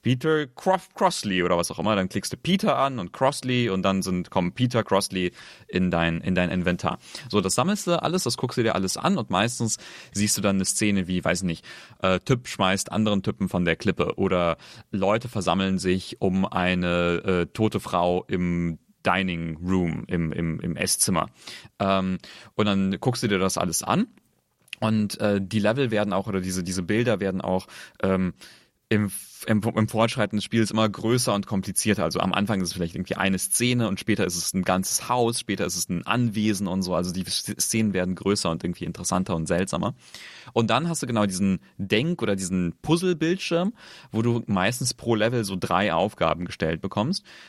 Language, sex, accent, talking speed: German, male, German, 195 wpm